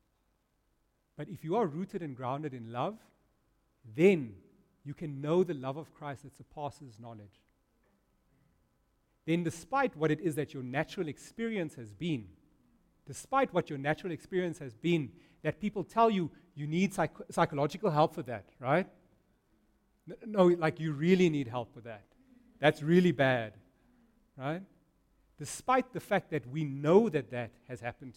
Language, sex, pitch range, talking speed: English, male, 130-175 Hz, 150 wpm